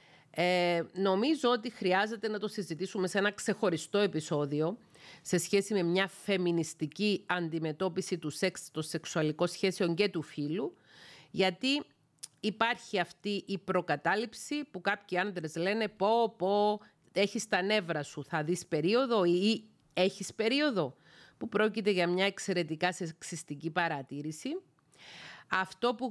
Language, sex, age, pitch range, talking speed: Greek, female, 40-59, 165-210 Hz, 125 wpm